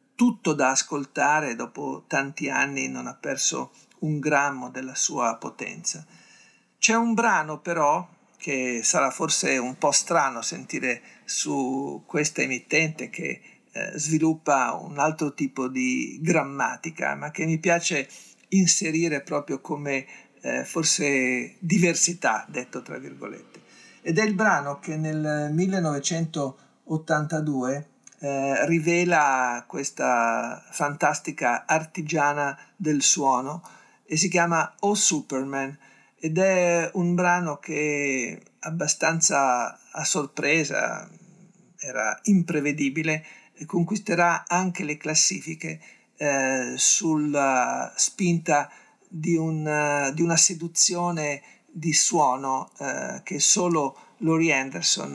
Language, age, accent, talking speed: Italian, 50-69, native, 110 wpm